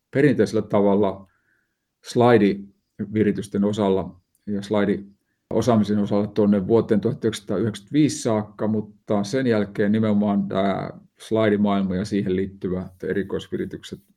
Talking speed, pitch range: 90 wpm, 100-110 Hz